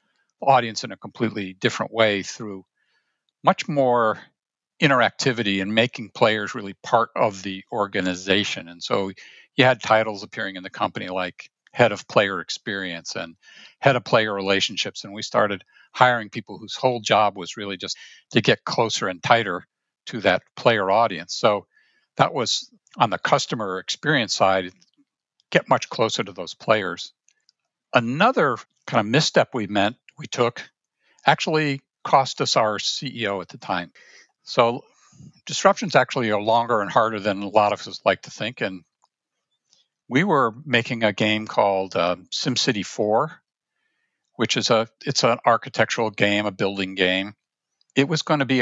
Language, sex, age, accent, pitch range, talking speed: English, male, 50-69, American, 100-125 Hz, 155 wpm